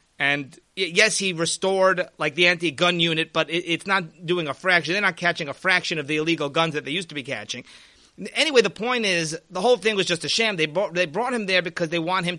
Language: English